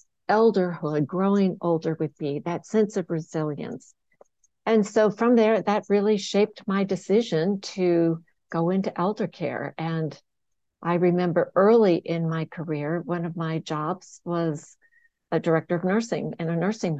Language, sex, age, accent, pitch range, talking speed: English, female, 60-79, American, 165-200 Hz, 150 wpm